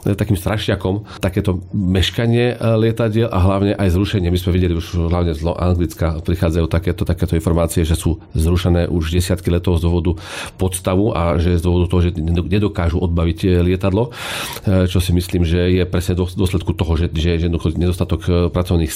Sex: male